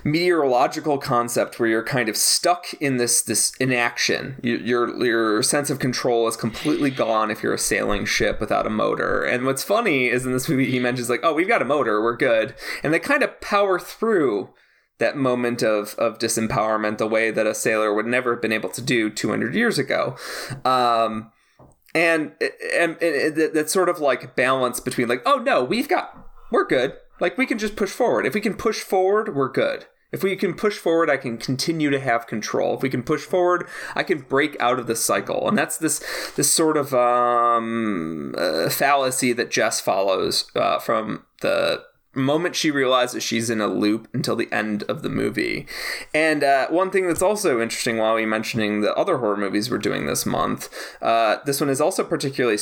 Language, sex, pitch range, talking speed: English, male, 115-160 Hz, 200 wpm